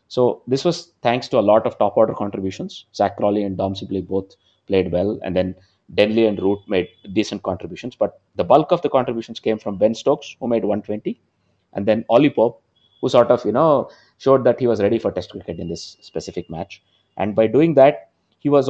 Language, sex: English, male